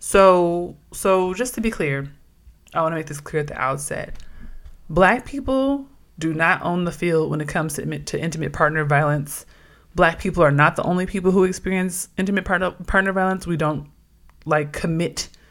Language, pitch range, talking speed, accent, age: English, 150-190 Hz, 180 wpm, American, 20-39